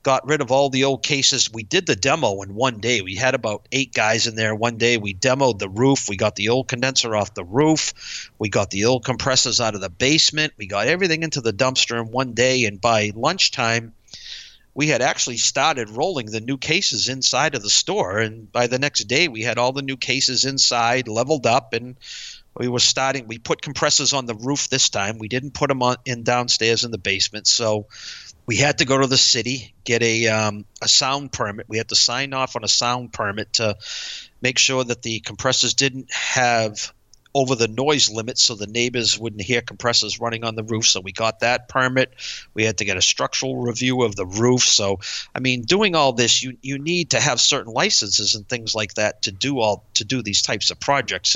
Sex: male